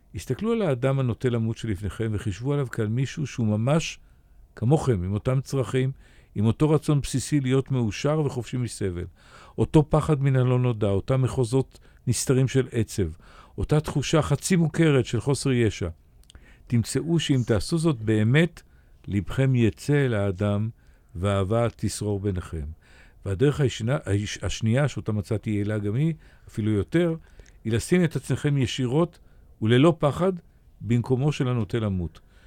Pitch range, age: 105-135 Hz, 50-69